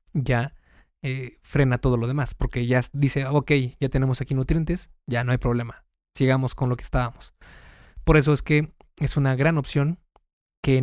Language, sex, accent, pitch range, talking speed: Spanish, male, Mexican, 130-150 Hz, 175 wpm